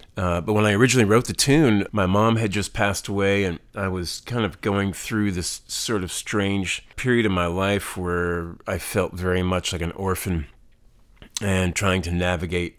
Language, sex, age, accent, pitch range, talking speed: English, male, 40-59, American, 90-110 Hz, 190 wpm